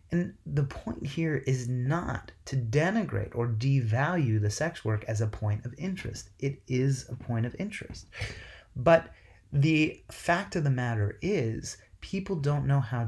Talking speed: 160 wpm